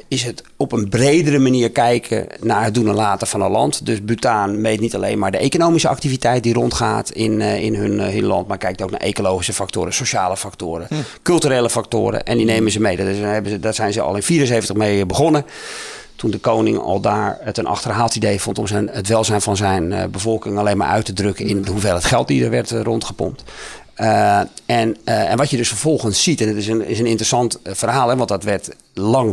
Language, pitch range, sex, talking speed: Dutch, 100-120 Hz, male, 215 wpm